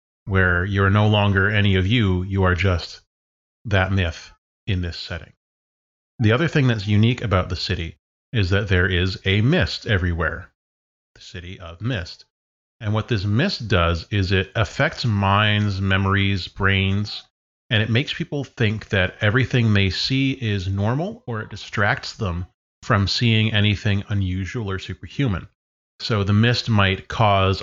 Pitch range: 90-110 Hz